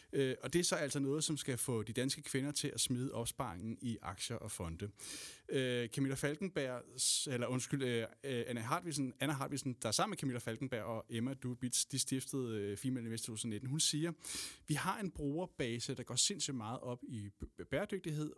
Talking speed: 180 wpm